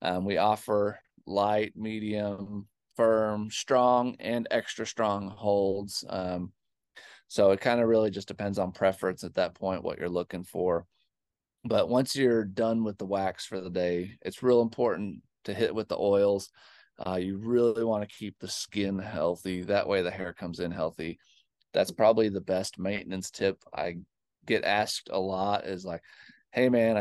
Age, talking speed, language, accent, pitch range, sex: 20-39, 170 wpm, English, American, 95-110 Hz, male